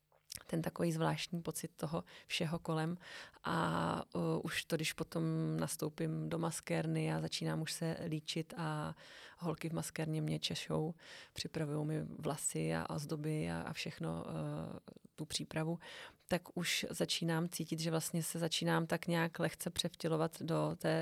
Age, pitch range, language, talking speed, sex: 30-49, 155-165 Hz, Czech, 150 wpm, female